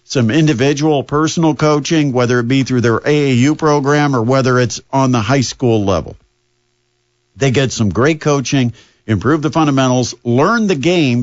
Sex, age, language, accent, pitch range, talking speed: male, 50-69, English, American, 120-155 Hz, 160 wpm